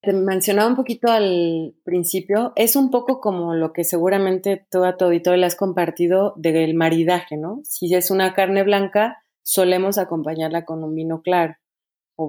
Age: 30-49